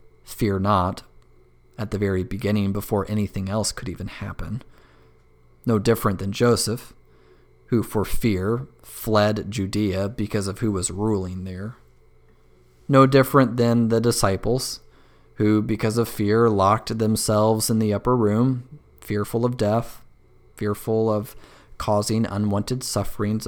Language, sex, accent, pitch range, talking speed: English, male, American, 95-120 Hz, 130 wpm